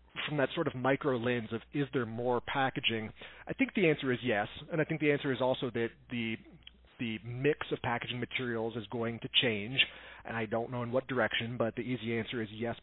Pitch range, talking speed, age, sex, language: 115-135 Hz, 225 wpm, 30-49, male, English